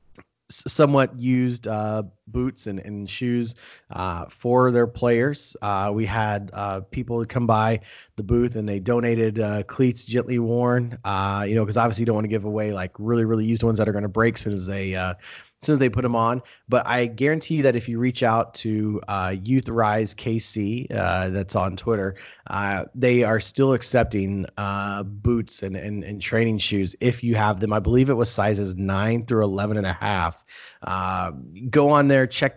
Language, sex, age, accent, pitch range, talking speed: English, male, 30-49, American, 100-120 Hz, 200 wpm